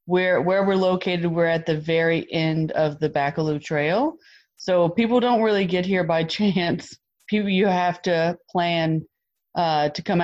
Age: 40-59